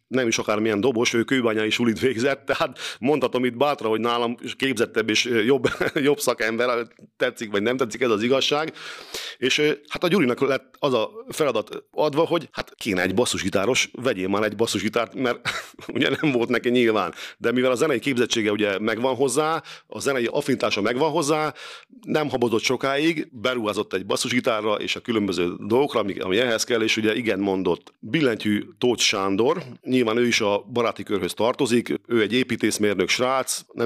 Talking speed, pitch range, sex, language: 170 wpm, 110-130 Hz, male, Hungarian